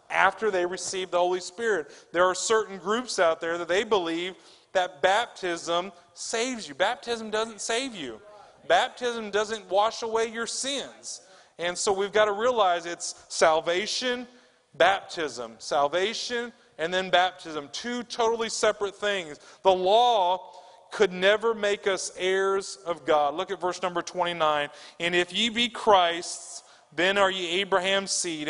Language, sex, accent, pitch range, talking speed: English, male, American, 175-205 Hz, 145 wpm